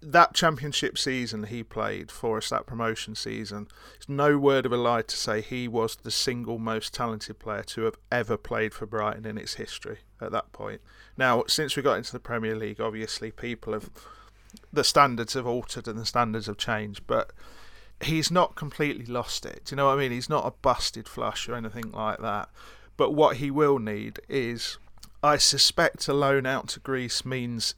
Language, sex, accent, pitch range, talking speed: English, male, British, 110-140 Hz, 200 wpm